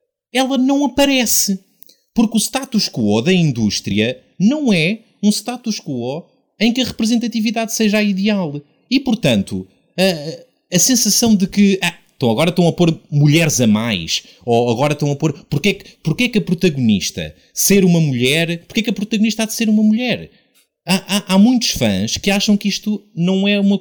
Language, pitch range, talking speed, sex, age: Portuguese, 145-210 Hz, 175 wpm, male, 30-49